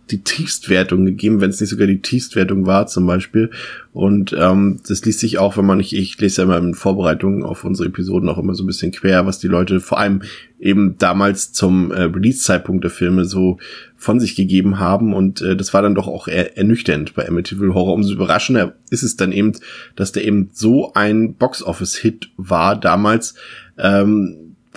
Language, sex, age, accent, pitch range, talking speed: German, male, 20-39, German, 95-110 Hz, 195 wpm